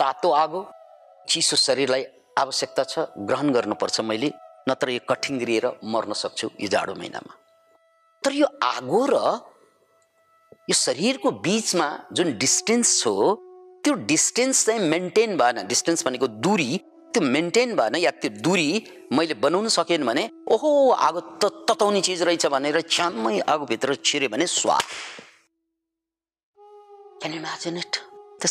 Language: English